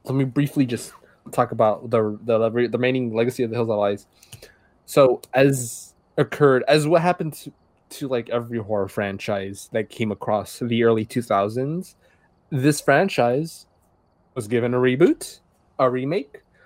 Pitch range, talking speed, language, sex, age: 105-140 Hz, 150 wpm, English, male, 20-39